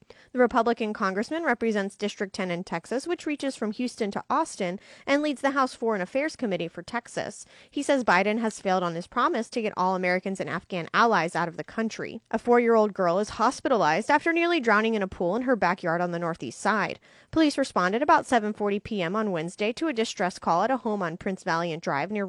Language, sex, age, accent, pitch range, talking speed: English, female, 20-39, American, 190-245 Hz, 215 wpm